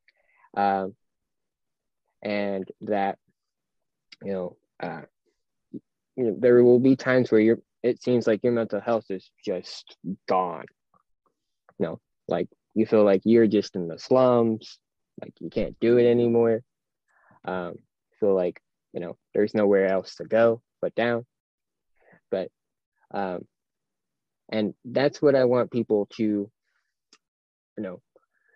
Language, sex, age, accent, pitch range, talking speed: English, male, 20-39, American, 100-120 Hz, 130 wpm